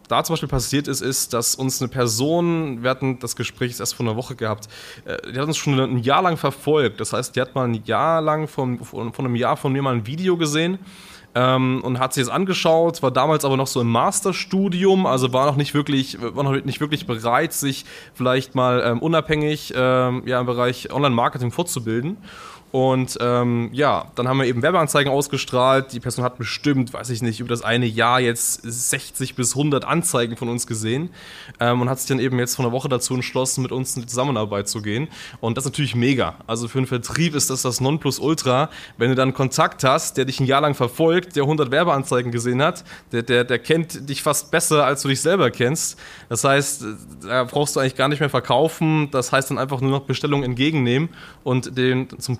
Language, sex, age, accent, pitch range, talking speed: German, male, 20-39, German, 125-150 Hz, 210 wpm